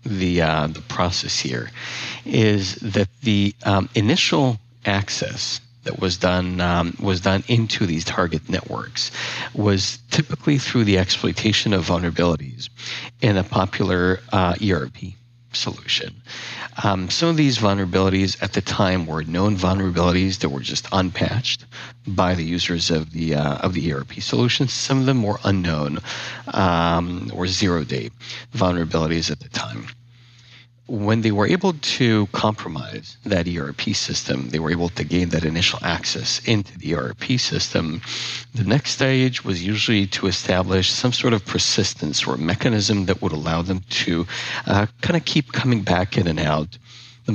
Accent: American